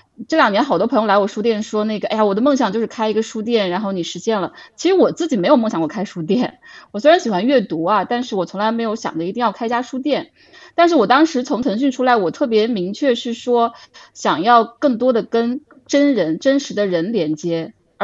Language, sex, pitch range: Chinese, female, 205-275 Hz